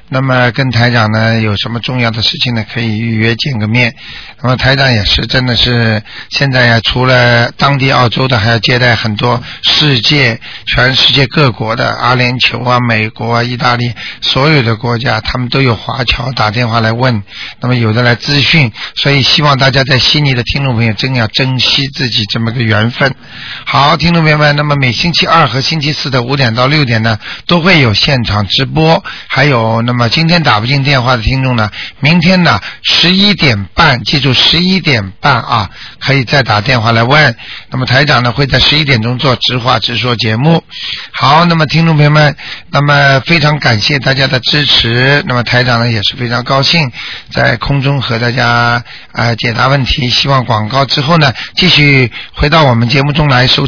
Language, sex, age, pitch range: Chinese, male, 50-69, 120-145 Hz